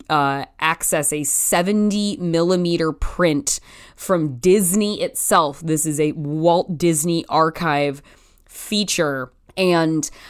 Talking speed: 100 wpm